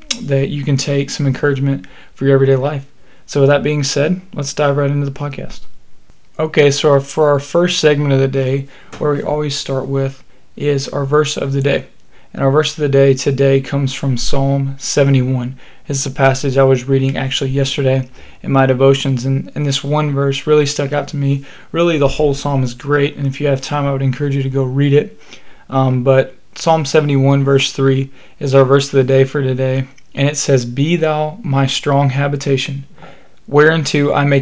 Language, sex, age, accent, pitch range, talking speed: English, male, 20-39, American, 135-145 Hz, 205 wpm